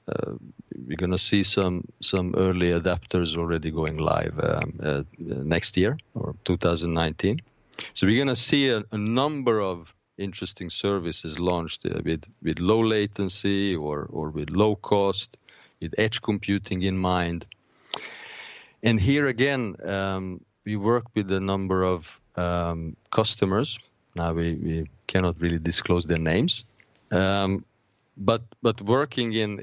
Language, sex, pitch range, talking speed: English, male, 85-110 Hz, 140 wpm